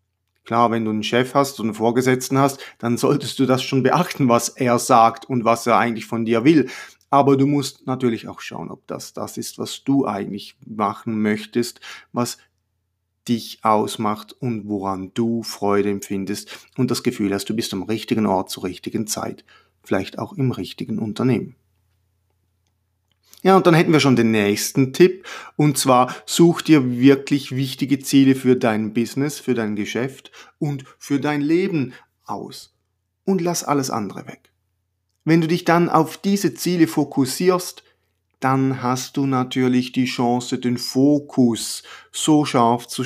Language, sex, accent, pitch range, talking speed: German, male, German, 115-150 Hz, 165 wpm